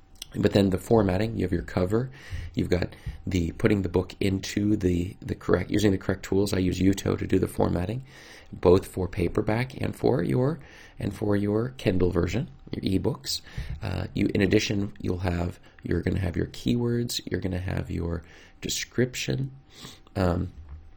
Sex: male